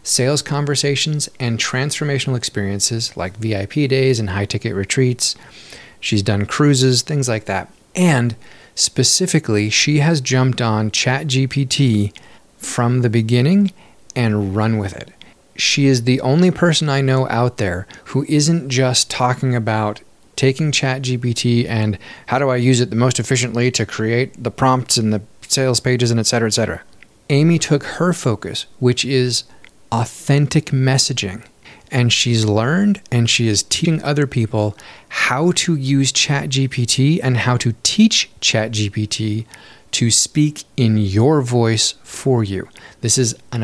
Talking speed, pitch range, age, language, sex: 150 wpm, 110-140 Hz, 30-49, English, male